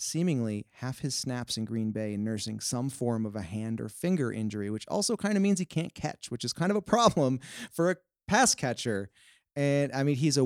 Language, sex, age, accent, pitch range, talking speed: English, male, 30-49, American, 110-150 Hz, 230 wpm